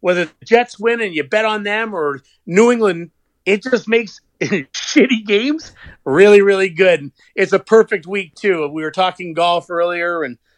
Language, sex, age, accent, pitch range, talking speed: English, male, 40-59, American, 145-195 Hz, 175 wpm